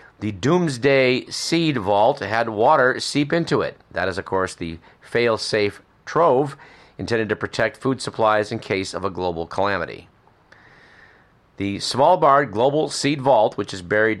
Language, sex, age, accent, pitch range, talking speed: English, male, 40-59, American, 100-125 Hz, 150 wpm